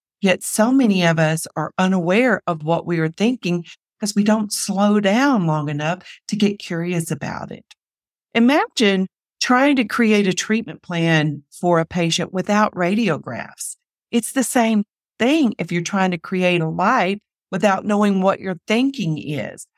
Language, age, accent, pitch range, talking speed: English, 50-69, American, 160-220 Hz, 160 wpm